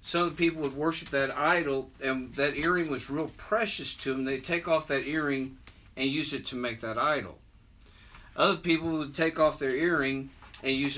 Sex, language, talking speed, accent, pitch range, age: male, English, 190 wpm, American, 130-165 Hz, 50-69